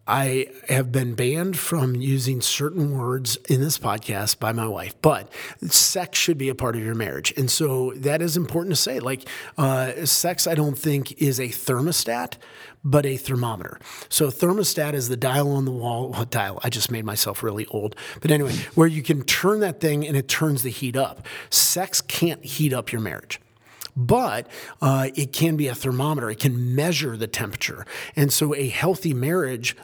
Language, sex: English, male